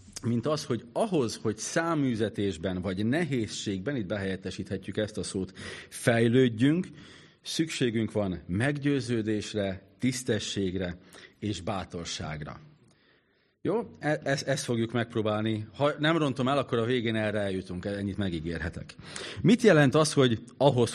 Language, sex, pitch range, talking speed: Hungarian, male, 100-140 Hz, 115 wpm